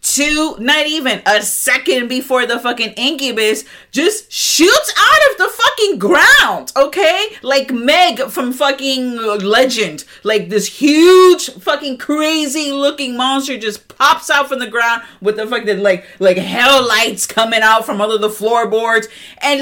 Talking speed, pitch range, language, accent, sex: 150 wpm, 190-275 Hz, English, American, female